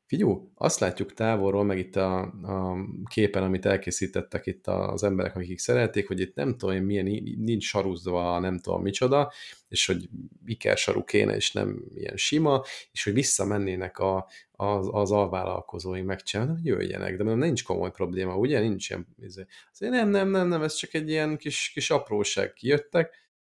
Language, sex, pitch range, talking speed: Hungarian, male, 95-135 Hz, 170 wpm